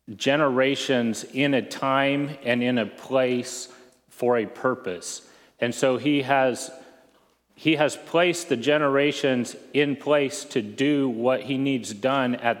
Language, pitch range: English, 115-135 Hz